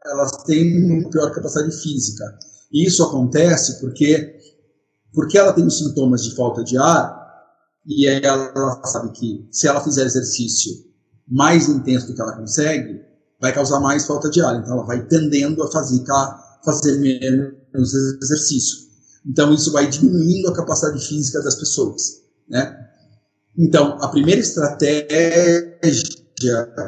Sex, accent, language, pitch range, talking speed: male, Brazilian, Portuguese, 130-160 Hz, 140 wpm